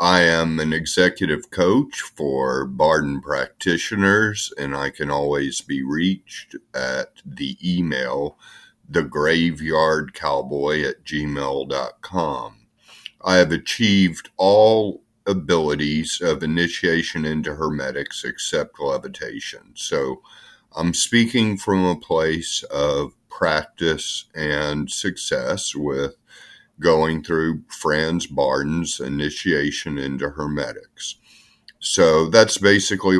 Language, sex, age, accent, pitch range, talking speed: English, male, 50-69, American, 75-90 Hz, 95 wpm